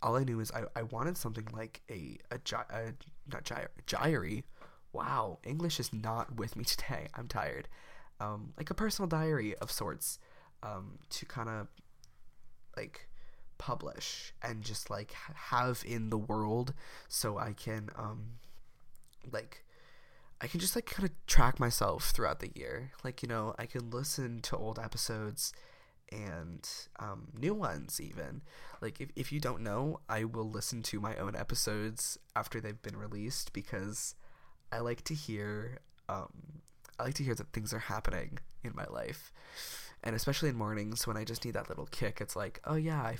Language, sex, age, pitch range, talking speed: English, male, 20-39, 110-135 Hz, 170 wpm